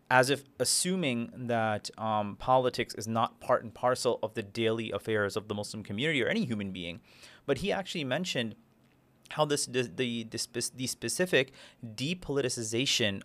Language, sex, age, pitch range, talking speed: English, male, 30-49, 115-145 Hz, 165 wpm